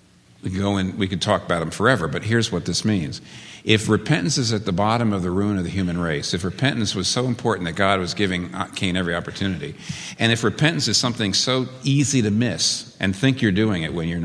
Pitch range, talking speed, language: 95-135 Hz, 230 wpm, English